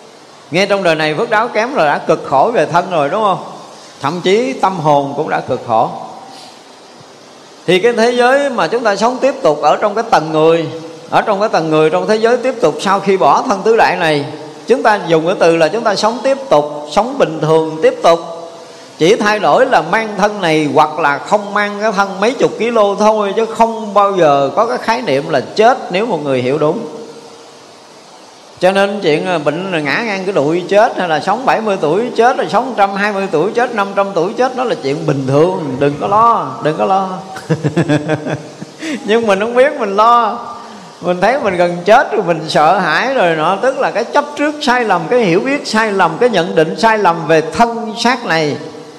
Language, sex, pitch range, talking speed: Vietnamese, male, 160-225 Hz, 215 wpm